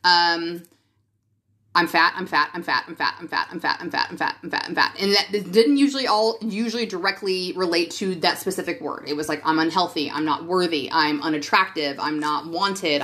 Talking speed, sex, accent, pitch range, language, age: 215 wpm, female, American, 165-225 Hz, English, 30-49